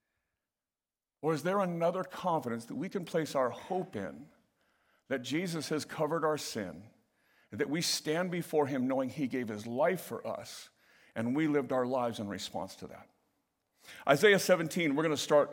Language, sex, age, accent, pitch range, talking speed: English, male, 50-69, American, 150-205 Hz, 175 wpm